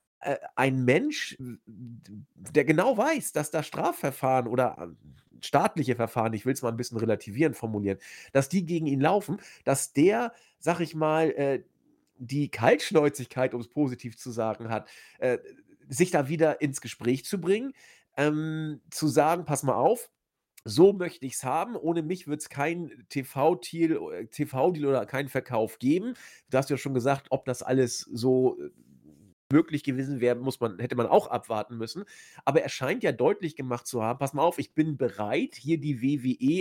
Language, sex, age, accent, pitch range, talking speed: German, male, 40-59, German, 125-165 Hz, 170 wpm